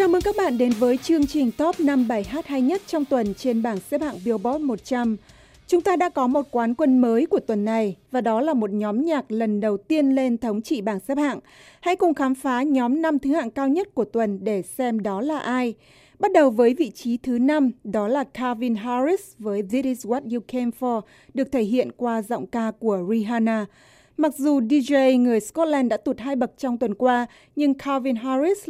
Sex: female